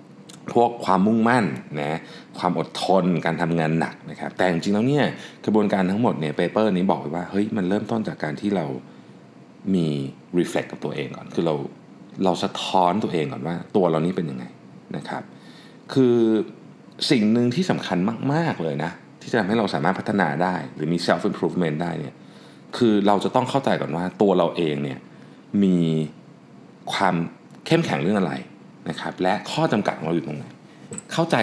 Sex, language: male, Thai